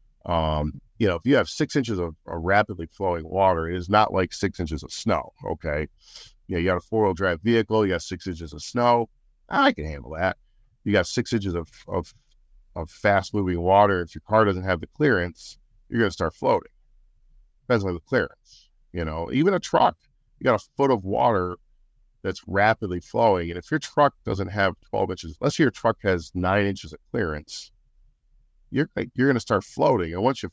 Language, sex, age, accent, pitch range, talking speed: English, male, 50-69, American, 85-110 Hz, 210 wpm